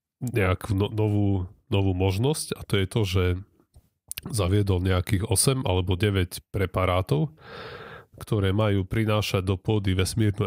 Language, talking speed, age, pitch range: Slovak, 120 wpm, 30-49, 90-105 Hz